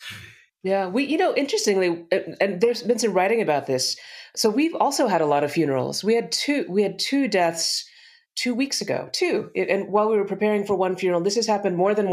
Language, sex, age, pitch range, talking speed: English, female, 30-49, 150-205 Hz, 220 wpm